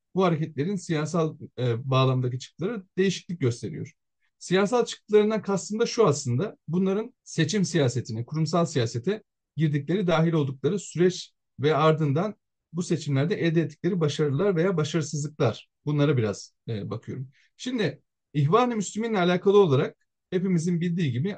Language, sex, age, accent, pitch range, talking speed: Turkish, male, 40-59, native, 135-190 Hz, 125 wpm